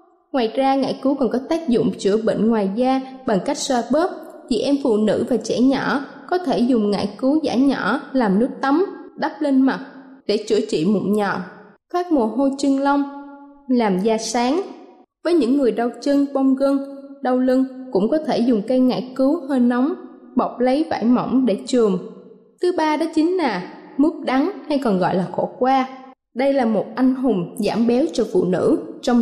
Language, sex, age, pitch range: Thai, female, 20-39, 230-295 Hz